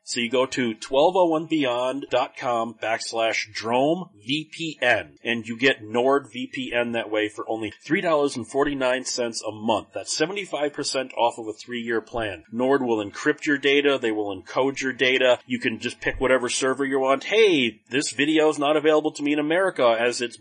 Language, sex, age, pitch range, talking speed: English, male, 30-49, 120-160 Hz, 160 wpm